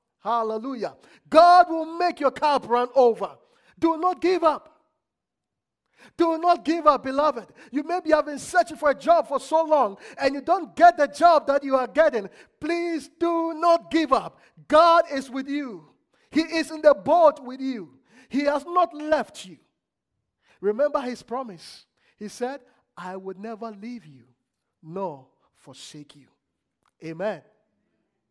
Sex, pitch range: male, 195-300 Hz